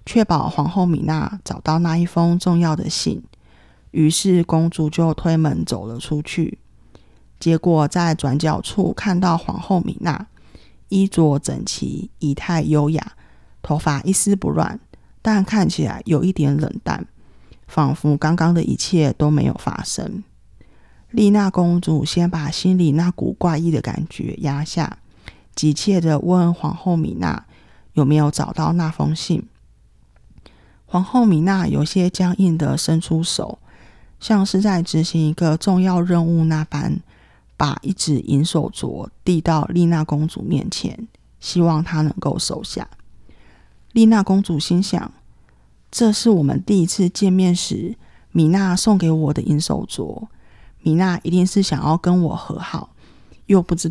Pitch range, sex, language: 155-185 Hz, female, Chinese